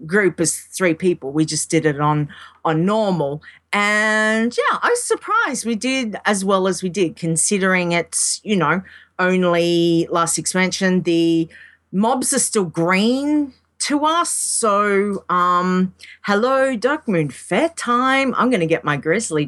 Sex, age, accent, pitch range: female, 40-59, Australian, 160-215 Hz